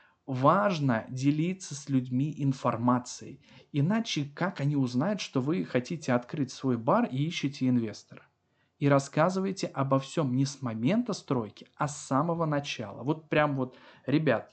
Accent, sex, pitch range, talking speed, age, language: native, male, 130-195 Hz, 140 wpm, 20-39, Russian